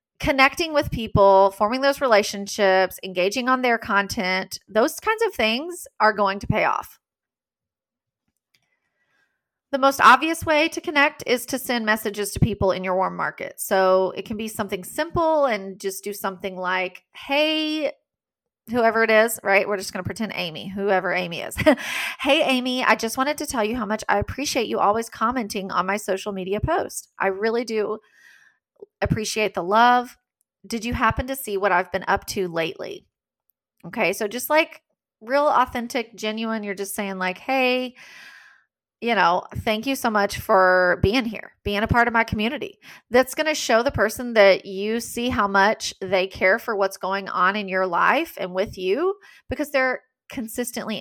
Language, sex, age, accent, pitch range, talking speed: English, female, 30-49, American, 195-260 Hz, 175 wpm